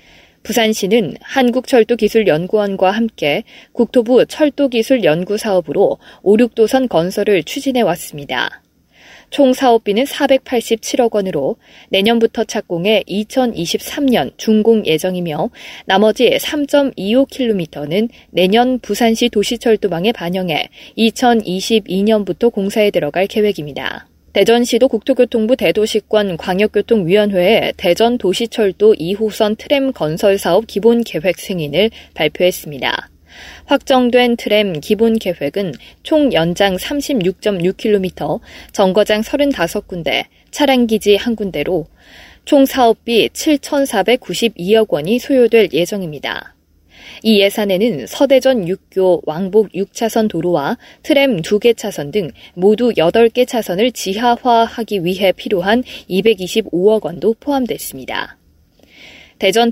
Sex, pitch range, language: female, 185-240 Hz, Korean